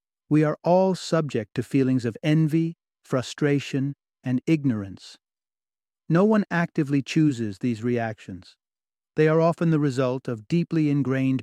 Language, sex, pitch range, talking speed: English, male, 130-160 Hz, 130 wpm